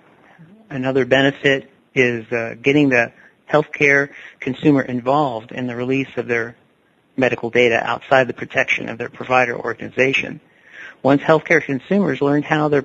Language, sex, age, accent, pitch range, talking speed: English, male, 50-69, American, 125-155 Hz, 135 wpm